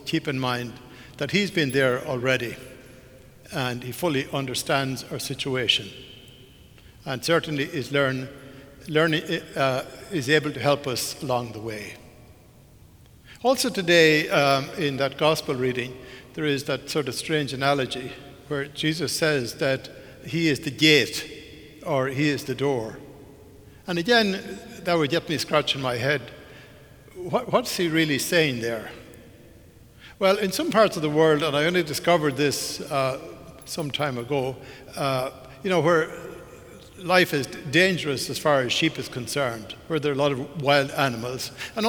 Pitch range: 130-160 Hz